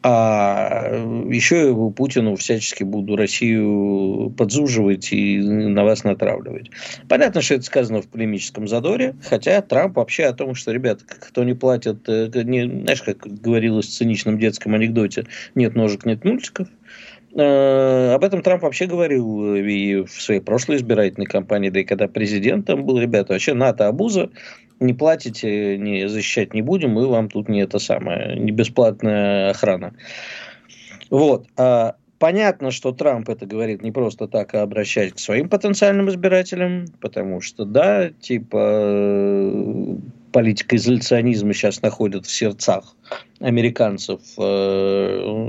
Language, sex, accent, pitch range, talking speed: Russian, male, native, 100-130 Hz, 135 wpm